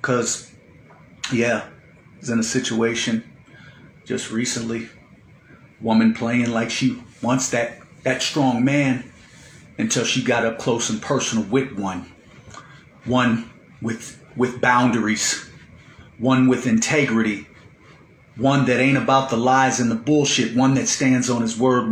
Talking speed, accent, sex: 135 wpm, American, male